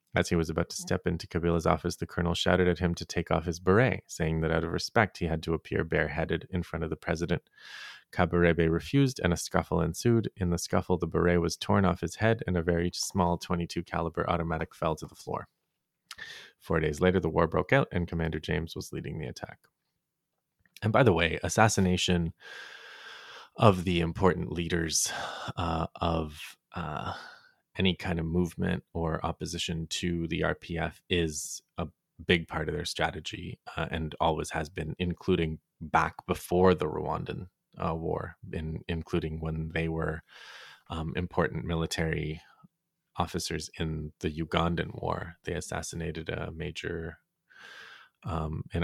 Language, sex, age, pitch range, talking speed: English, male, 30-49, 80-90 Hz, 165 wpm